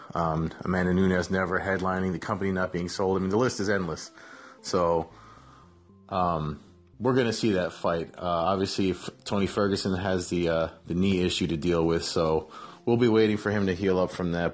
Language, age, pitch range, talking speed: English, 30-49, 90-110 Hz, 200 wpm